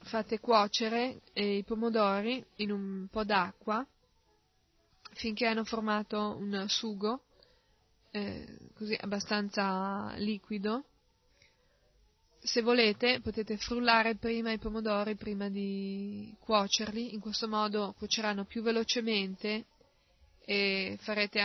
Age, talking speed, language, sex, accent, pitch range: 20-39, 100 wpm, Italian, female, native, 200-225 Hz